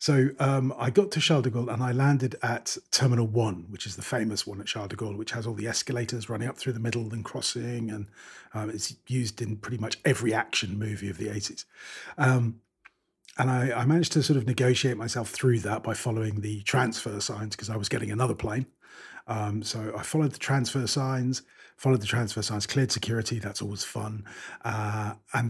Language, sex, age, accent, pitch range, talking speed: English, male, 40-59, British, 105-130 Hz, 210 wpm